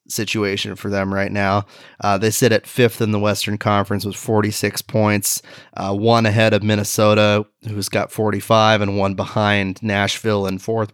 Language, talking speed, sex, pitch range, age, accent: English, 170 wpm, male, 100-110 Hz, 20-39, American